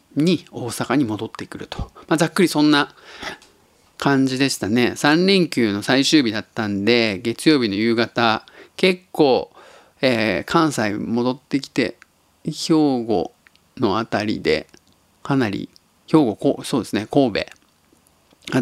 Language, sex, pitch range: Japanese, male, 110-155 Hz